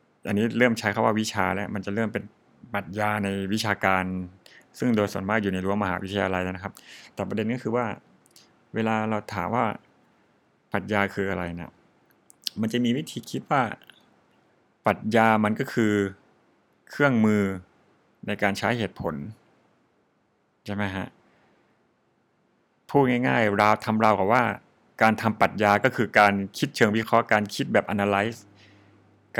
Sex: male